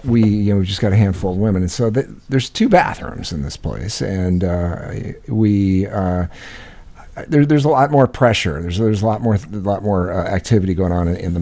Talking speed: 230 wpm